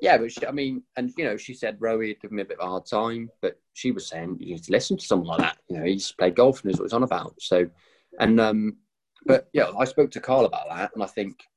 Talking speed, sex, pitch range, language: 295 wpm, male, 90-110 Hz, English